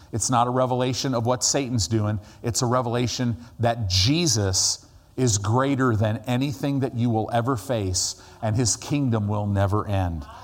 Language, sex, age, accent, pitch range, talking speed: English, male, 50-69, American, 100-130 Hz, 160 wpm